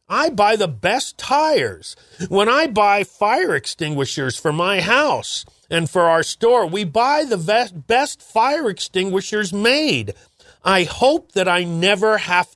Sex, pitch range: male, 160-215 Hz